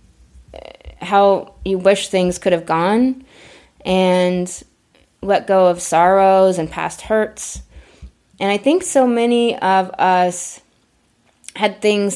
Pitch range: 175-205 Hz